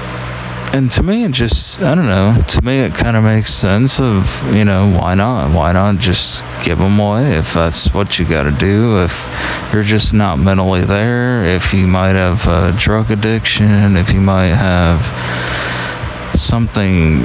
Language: English